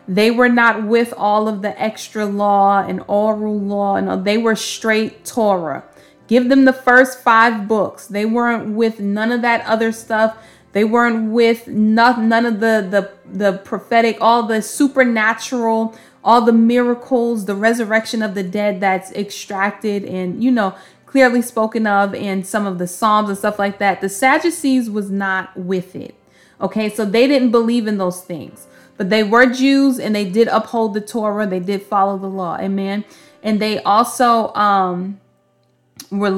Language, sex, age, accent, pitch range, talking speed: English, female, 20-39, American, 195-230 Hz, 170 wpm